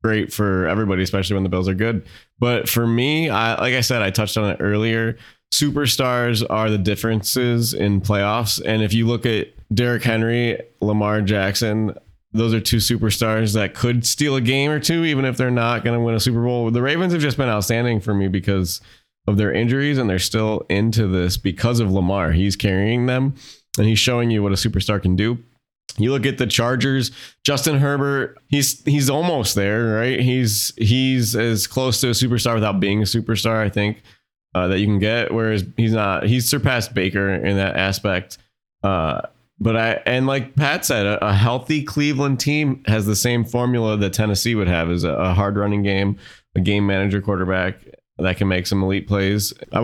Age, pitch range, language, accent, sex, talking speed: 20-39, 100-125 Hz, English, American, male, 200 wpm